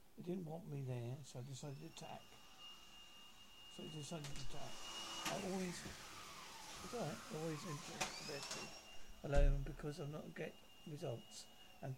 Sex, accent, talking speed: male, British, 140 wpm